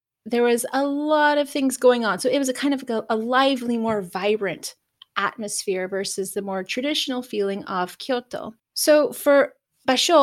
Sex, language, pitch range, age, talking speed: female, English, 215-275 Hz, 30-49, 175 wpm